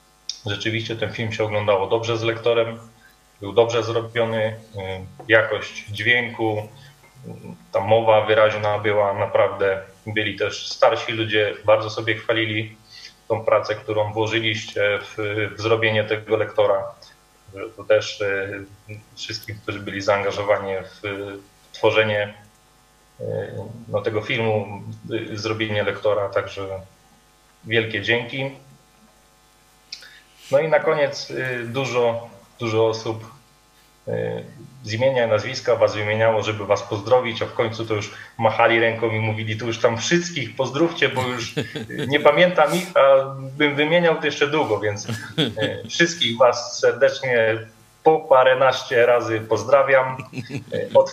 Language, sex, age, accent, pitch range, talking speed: Polish, male, 30-49, native, 105-125 Hz, 115 wpm